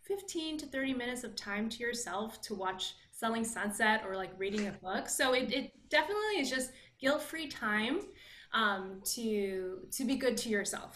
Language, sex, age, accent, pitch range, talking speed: English, female, 20-39, American, 195-230 Hz, 175 wpm